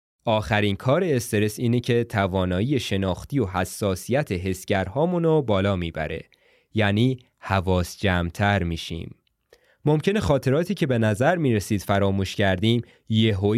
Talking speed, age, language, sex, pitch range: 110 wpm, 20-39, Persian, male, 95-130 Hz